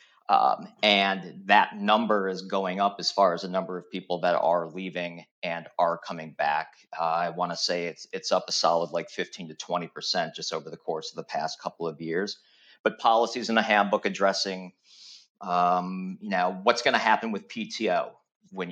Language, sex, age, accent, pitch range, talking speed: English, male, 40-59, American, 95-115 Hz, 190 wpm